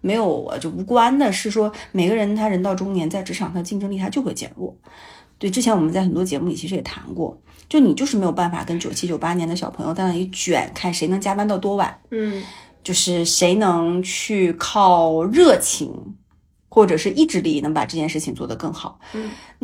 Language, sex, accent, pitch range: Chinese, female, native, 170-210 Hz